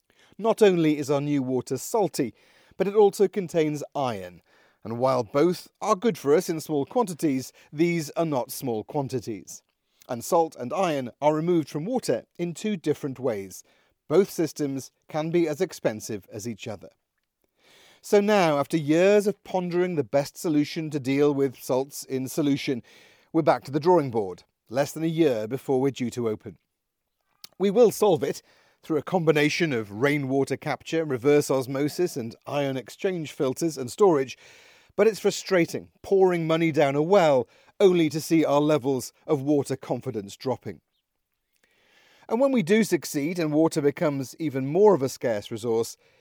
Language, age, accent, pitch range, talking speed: English, 40-59, British, 135-175 Hz, 165 wpm